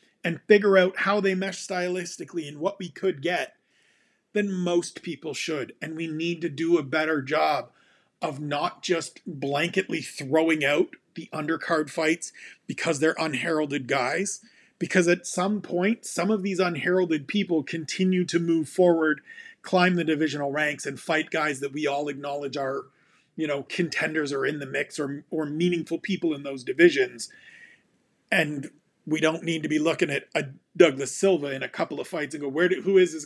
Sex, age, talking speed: male, 40-59, 180 wpm